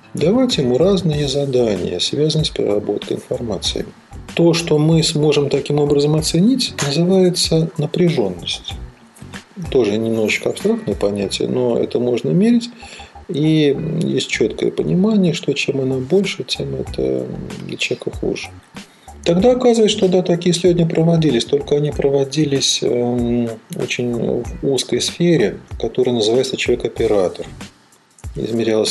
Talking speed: 115 wpm